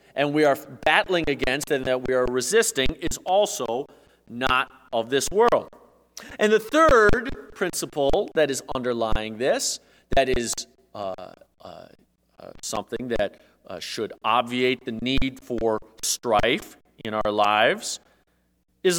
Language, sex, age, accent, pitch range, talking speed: English, male, 30-49, American, 105-175 Hz, 135 wpm